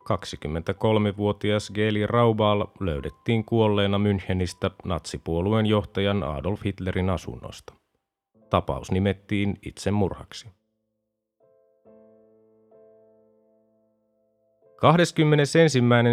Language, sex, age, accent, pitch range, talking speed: Finnish, male, 30-49, native, 100-115 Hz, 60 wpm